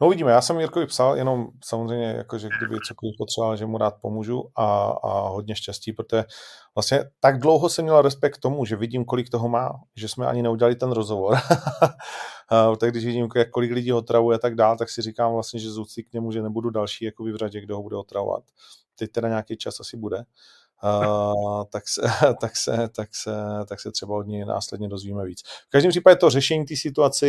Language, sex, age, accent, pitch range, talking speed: Czech, male, 30-49, native, 105-120 Hz, 210 wpm